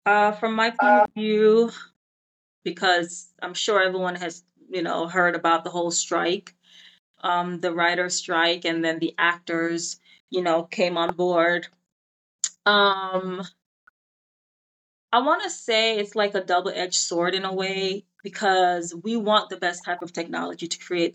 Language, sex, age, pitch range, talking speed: English, female, 20-39, 175-205 Hz, 155 wpm